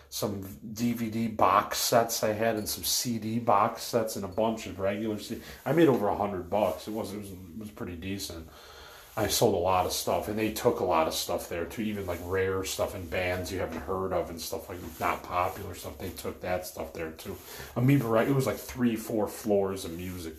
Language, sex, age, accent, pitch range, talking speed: English, male, 30-49, American, 95-120 Hz, 225 wpm